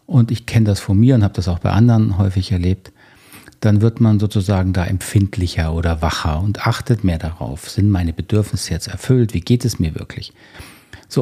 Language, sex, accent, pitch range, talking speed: German, male, German, 95-120 Hz, 200 wpm